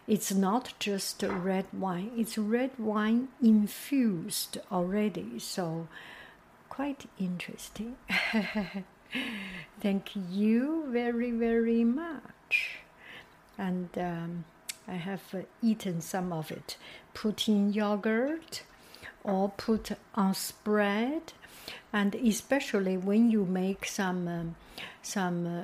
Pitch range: 185-230 Hz